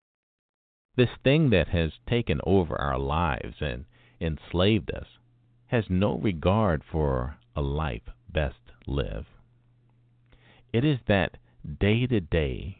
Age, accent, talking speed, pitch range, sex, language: 50-69, American, 110 wpm, 80-120 Hz, male, English